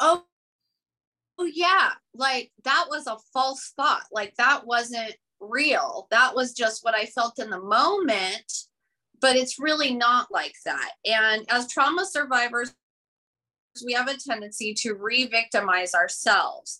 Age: 30-49